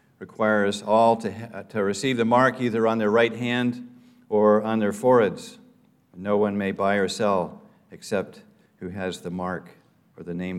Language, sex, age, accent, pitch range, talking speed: English, male, 50-69, American, 105-140 Hz, 175 wpm